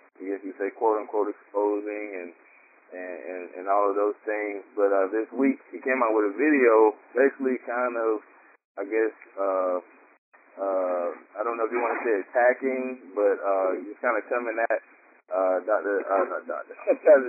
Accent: American